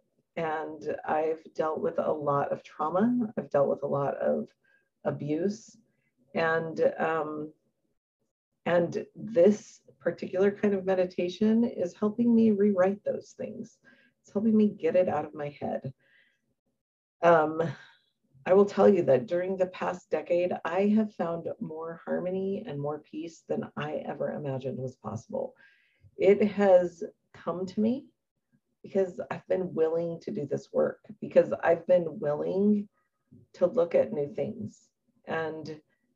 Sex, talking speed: female, 140 wpm